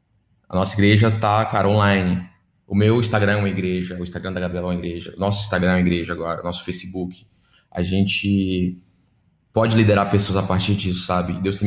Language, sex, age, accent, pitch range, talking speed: Portuguese, male, 20-39, Brazilian, 95-110 Hz, 195 wpm